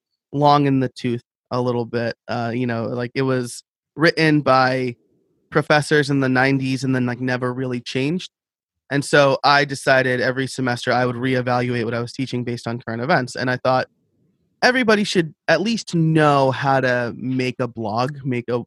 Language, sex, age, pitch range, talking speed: English, male, 20-39, 125-160 Hz, 185 wpm